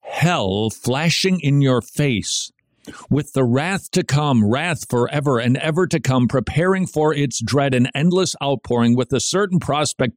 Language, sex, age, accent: English, male, 50-69, American